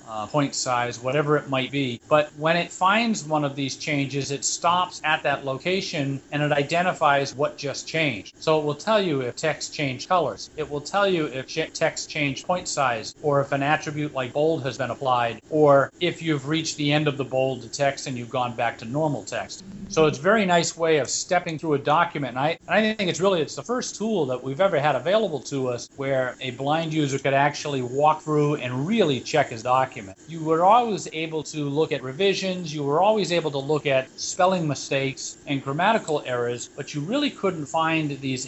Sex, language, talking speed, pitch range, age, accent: male, English, 215 wpm, 135-160 Hz, 40-59, American